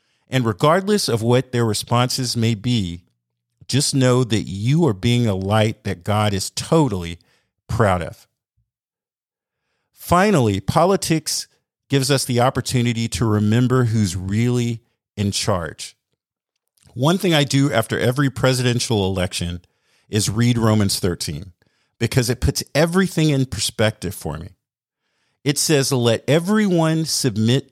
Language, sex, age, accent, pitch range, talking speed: English, male, 50-69, American, 105-140 Hz, 130 wpm